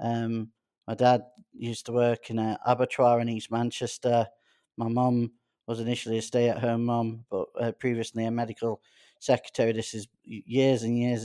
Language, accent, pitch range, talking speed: English, British, 115-125 Hz, 165 wpm